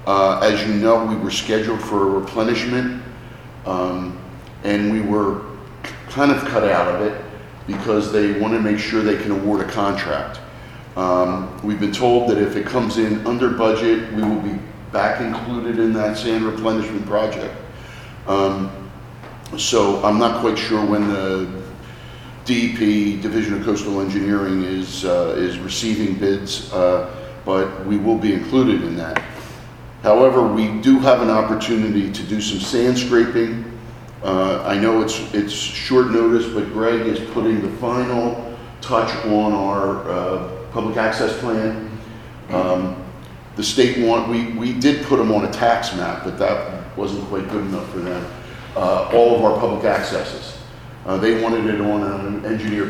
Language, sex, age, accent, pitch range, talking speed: English, male, 50-69, American, 100-115 Hz, 160 wpm